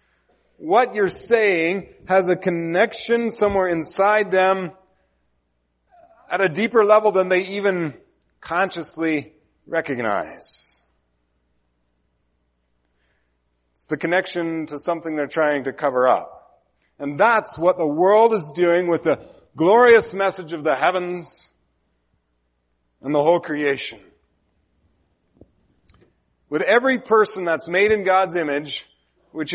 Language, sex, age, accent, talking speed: English, male, 40-59, American, 110 wpm